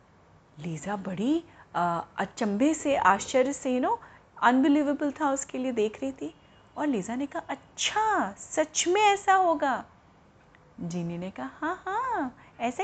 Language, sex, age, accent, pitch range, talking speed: Hindi, female, 30-49, native, 235-365 Hz, 140 wpm